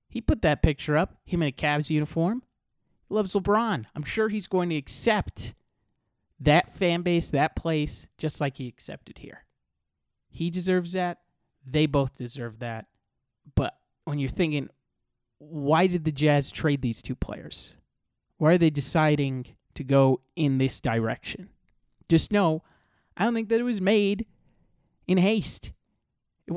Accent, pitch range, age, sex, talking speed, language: American, 135-175 Hz, 30-49, male, 155 wpm, English